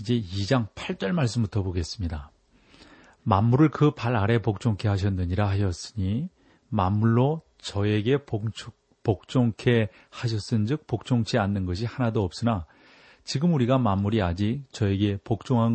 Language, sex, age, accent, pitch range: Korean, male, 40-59, native, 95-125 Hz